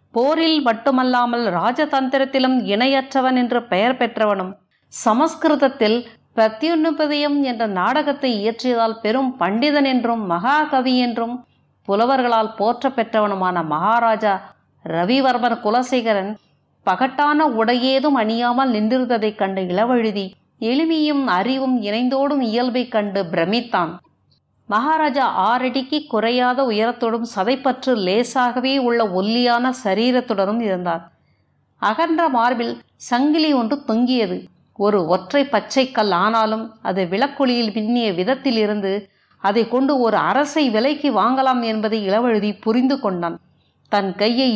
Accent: native